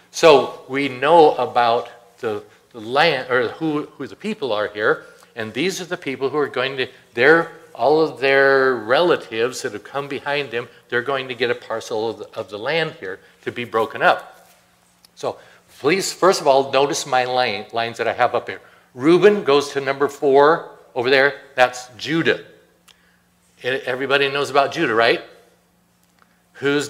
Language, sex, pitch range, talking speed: English, male, 125-170 Hz, 175 wpm